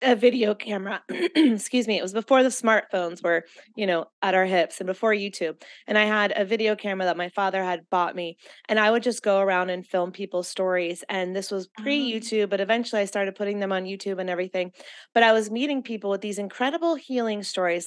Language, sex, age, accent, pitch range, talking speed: English, female, 30-49, American, 190-245 Hz, 220 wpm